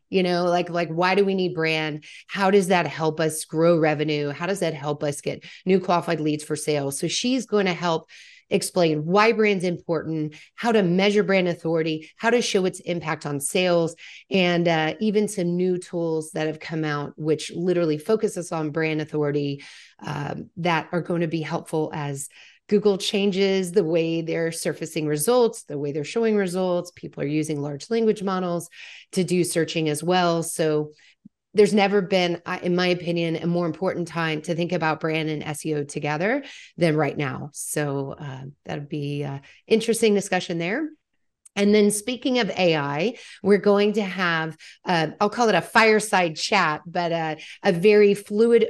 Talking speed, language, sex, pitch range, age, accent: 180 wpm, English, female, 160-195 Hz, 30-49, American